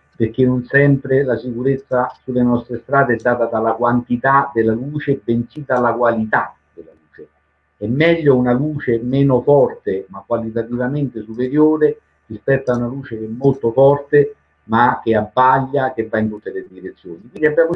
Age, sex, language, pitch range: 50-69, male, Italian, 100-130 Hz